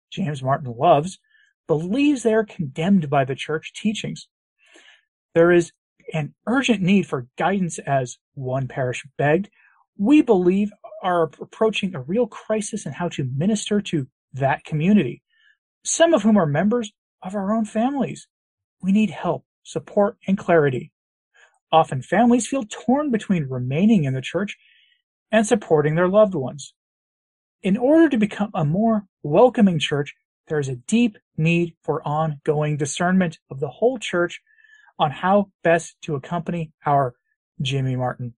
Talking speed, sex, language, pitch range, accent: 145 wpm, male, English, 150-215 Hz, American